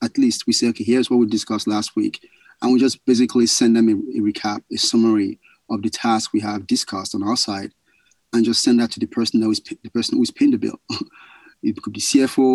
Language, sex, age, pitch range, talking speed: English, male, 30-49, 110-135 Hz, 245 wpm